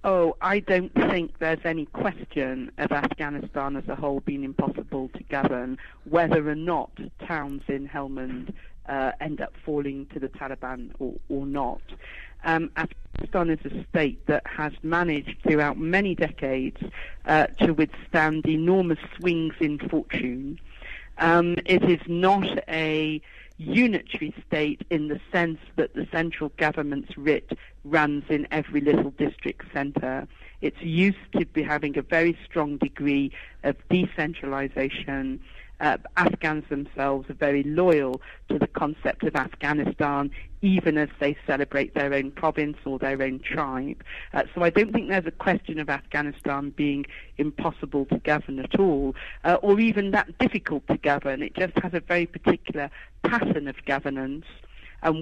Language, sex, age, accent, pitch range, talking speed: English, female, 50-69, British, 140-170 Hz, 150 wpm